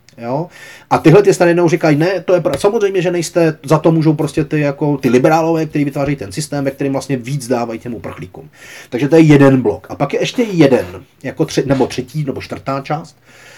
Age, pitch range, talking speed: 30-49, 120-155 Hz, 210 wpm